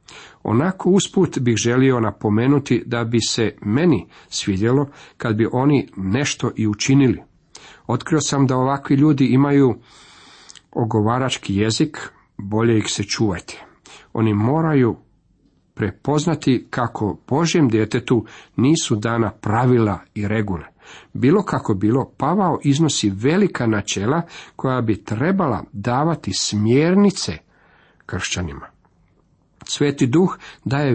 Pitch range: 110-145 Hz